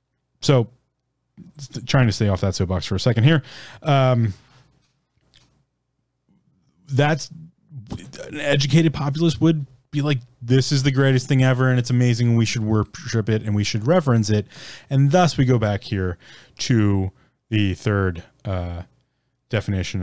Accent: American